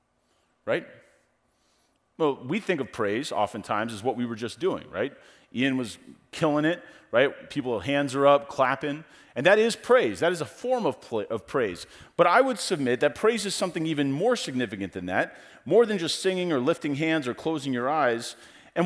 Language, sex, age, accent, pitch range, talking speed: English, male, 40-59, American, 115-175 Hz, 190 wpm